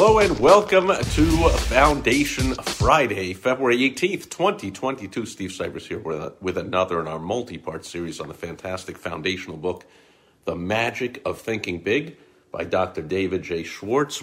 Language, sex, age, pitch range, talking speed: English, male, 50-69, 95-120 Hz, 145 wpm